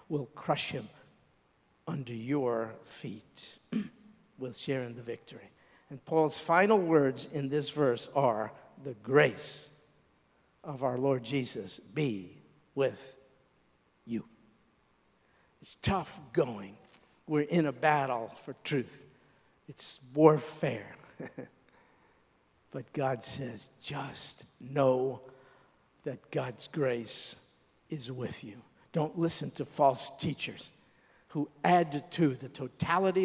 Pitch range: 140-185 Hz